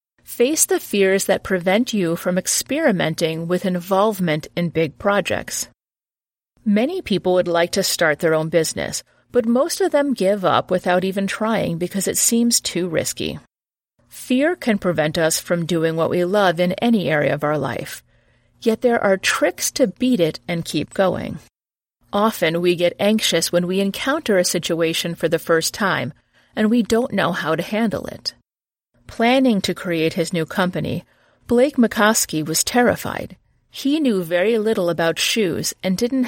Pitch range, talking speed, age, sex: 170-220 Hz, 165 wpm, 40-59, female